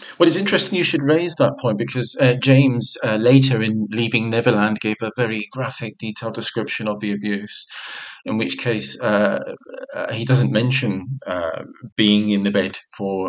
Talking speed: 175 wpm